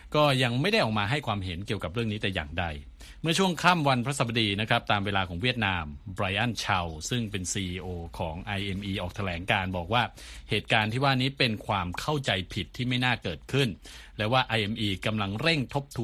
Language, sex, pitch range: Thai, male, 95-130 Hz